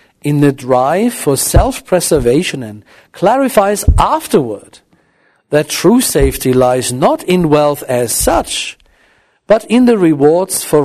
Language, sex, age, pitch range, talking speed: English, male, 60-79, 130-195 Hz, 120 wpm